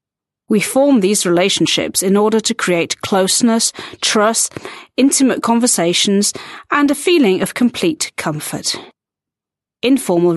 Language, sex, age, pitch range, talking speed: Slovak, female, 40-59, 180-260 Hz, 110 wpm